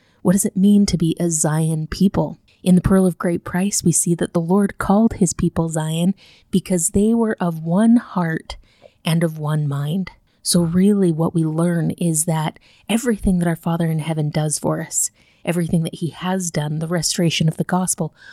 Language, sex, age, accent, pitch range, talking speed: English, female, 30-49, American, 160-190 Hz, 195 wpm